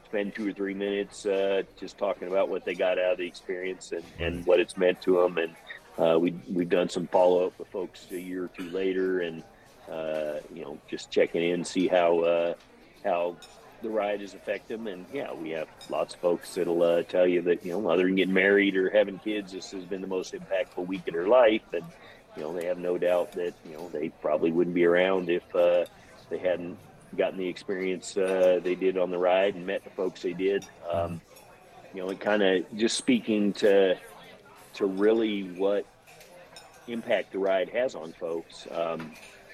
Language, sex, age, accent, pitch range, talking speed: English, male, 50-69, American, 90-100 Hz, 210 wpm